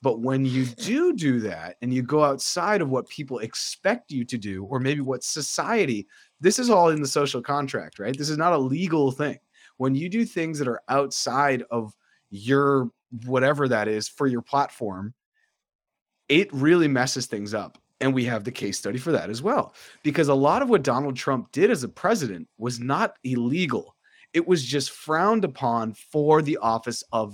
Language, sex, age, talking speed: English, male, 30-49, 195 wpm